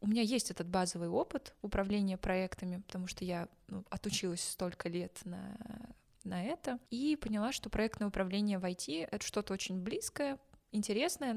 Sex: female